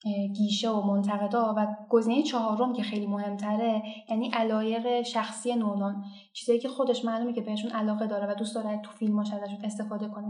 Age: 10-29